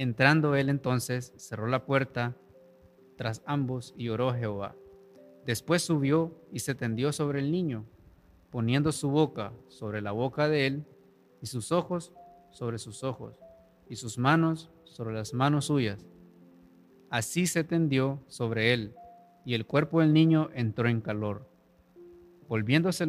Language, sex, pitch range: Spanish, male, 115-160 Hz